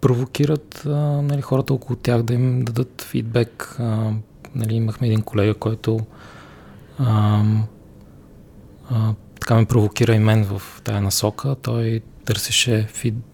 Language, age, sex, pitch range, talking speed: Bulgarian, 20-39, male, 105-125 Hz, 120 wpm